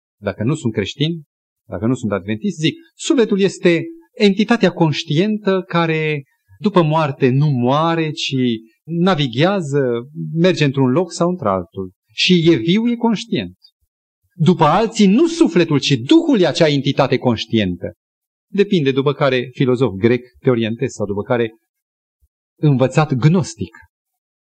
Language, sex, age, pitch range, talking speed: Romanian, male, 30-49, 120-190 Hz, 125 wpm